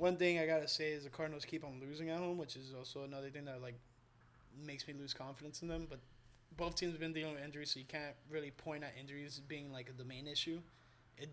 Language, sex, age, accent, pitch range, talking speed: English, male, 20-39, American, 130-155 Hz, 255 wpm